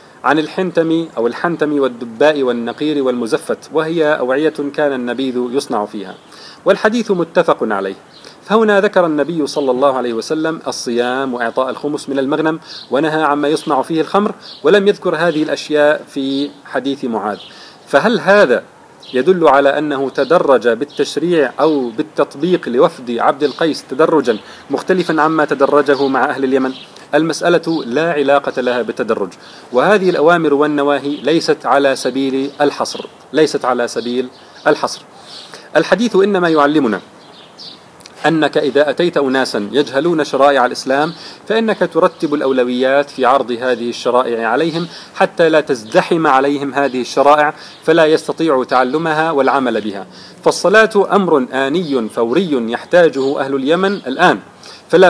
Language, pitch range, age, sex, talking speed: Arabic, 135-165 Hz, 40-59, male, 120 wpm